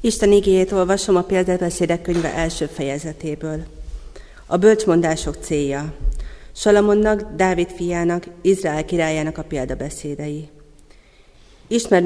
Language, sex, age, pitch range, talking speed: Hungarian, female, 40-59, 150-180 Hz, 95 wpm